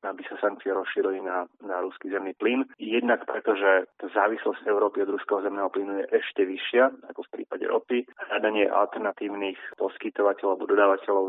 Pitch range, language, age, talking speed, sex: 95-125 Hz, Slovak, 30-49, 155 wpm, male